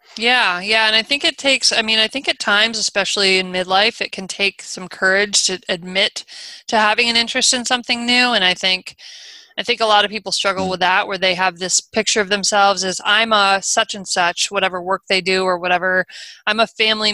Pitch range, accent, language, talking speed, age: 185-215 Hz, American, English, 225 wpm, 20-39